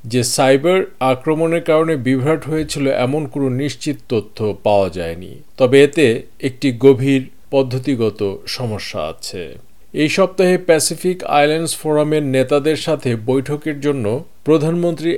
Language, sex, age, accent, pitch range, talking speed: Bengali, male, 50-69, native, 120-150 Hz, 115 wpm